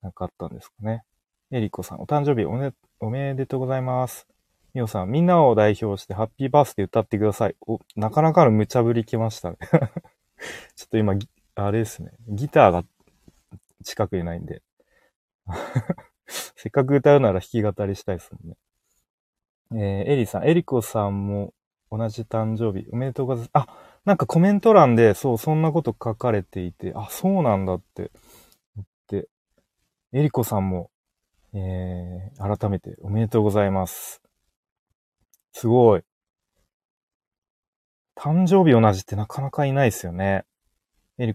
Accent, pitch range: native, 100-130 Hz